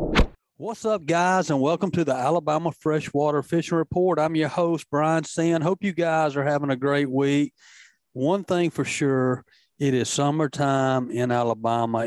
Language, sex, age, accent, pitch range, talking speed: English, male, 40-59, American, 120-150 Hz, 165 wpm